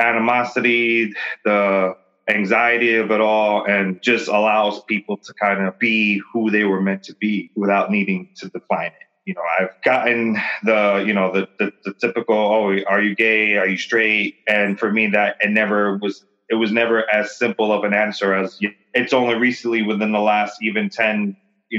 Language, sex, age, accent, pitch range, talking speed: English, male, 30-49, American, 100-110 Hz, 185 wpm